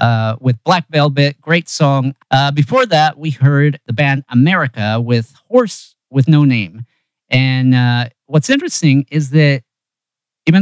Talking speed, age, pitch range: 145 wpm, 50-69, 115-150 Hz